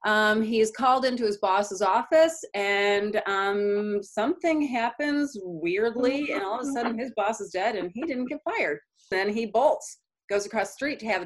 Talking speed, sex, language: 185 wpm, female, English